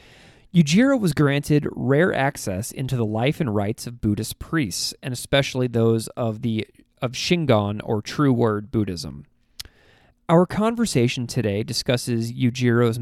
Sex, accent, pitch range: male, American, 110-140 Hz